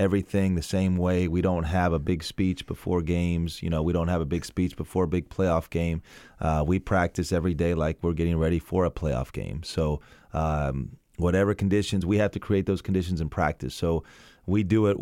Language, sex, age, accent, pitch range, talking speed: English, male, 30-49, American, 80-95 Hz, 215 wpm